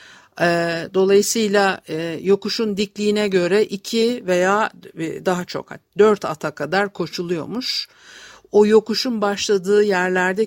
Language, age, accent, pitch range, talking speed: Turkish, 50-69, native, 170-225 Hz, 90 wpm